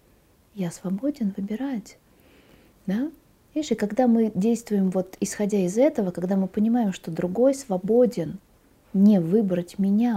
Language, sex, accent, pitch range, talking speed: Russian, female, native, 185-220 Hz, 130 wpm